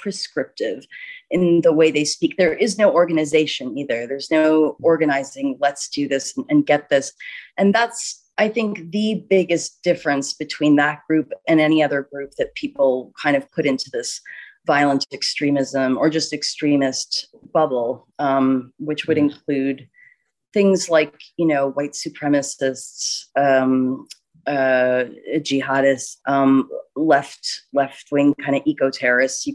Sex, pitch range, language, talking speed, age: female, 140-175 Hz, English, 135 wpm, 30-49